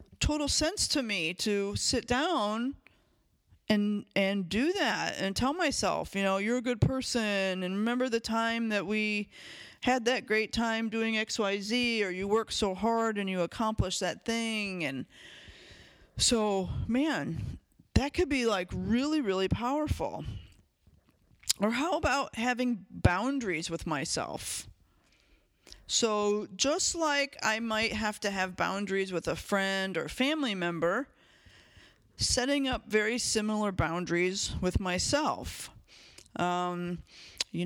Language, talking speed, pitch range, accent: English, 130 wpm, 185-230 Hz, American